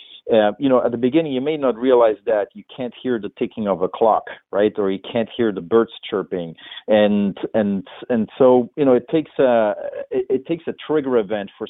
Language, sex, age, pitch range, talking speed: English, male, 40-59, 100-120 Hz, 220 wpm